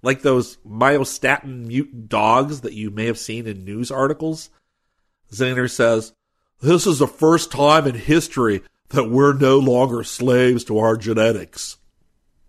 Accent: American